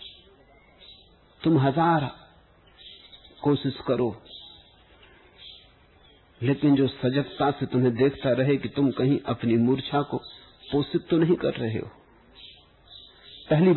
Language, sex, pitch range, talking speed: English, male, 120-180 Hz, 105 wpm